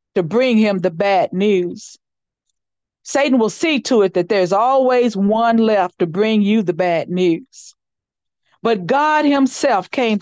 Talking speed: 155 wpm